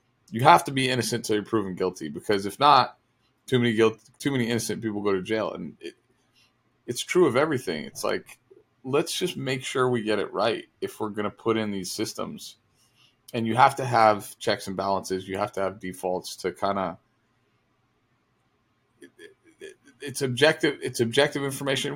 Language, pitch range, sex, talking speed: English, 105-130 Hz, male, 190 wpm